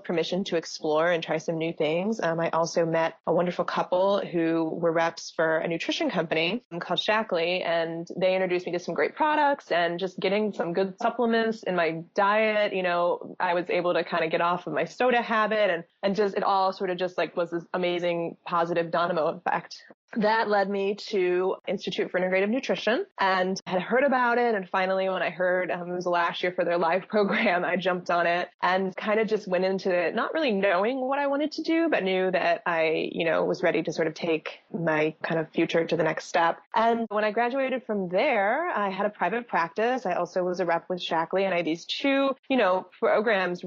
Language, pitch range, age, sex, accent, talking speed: English, 170-210 Hz, 20-39, female, American, 225 wpm